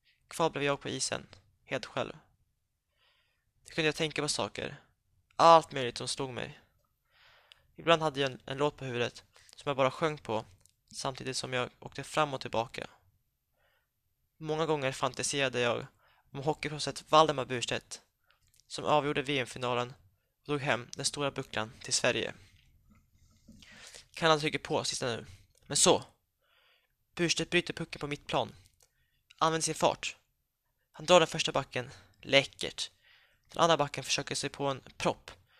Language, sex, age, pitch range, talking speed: Swedish, male, 20-39, 125-155 Hz, 150 wpm